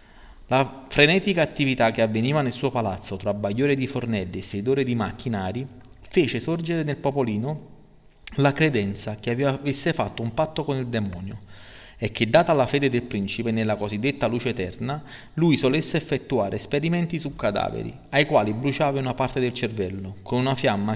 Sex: male